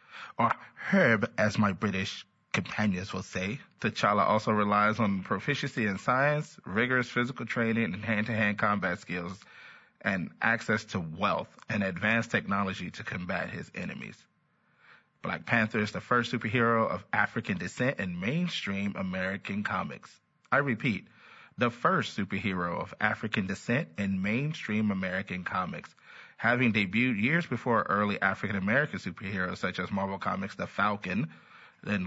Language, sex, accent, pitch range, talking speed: English, male, American, 95-115 Hz, 135 wpm